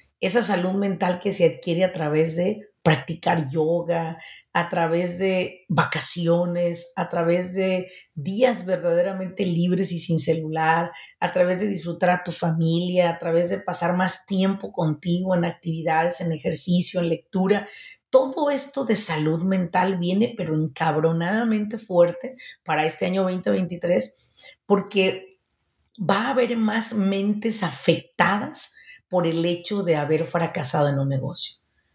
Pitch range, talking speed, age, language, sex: 165-210 Hz, 135 wpm, 40-59, Spanish, female